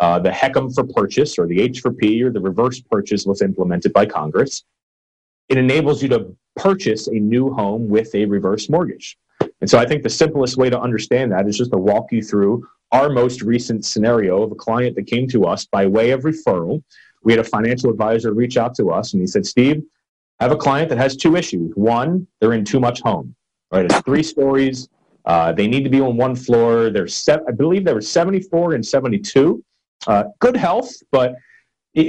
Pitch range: 115-155 Hz